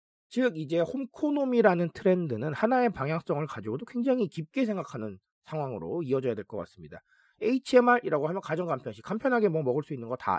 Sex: male